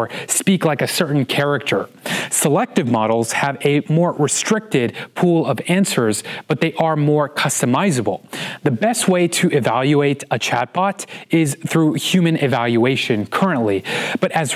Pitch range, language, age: 135-180 Hz, English, 30-49